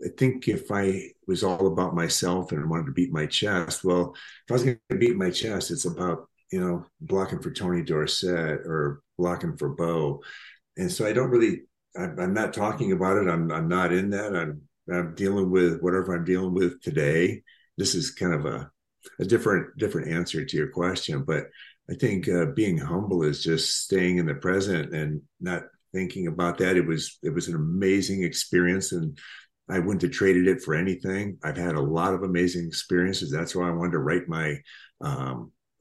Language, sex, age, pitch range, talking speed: English, male, 50-69, 80-95 Hz, 200 wpm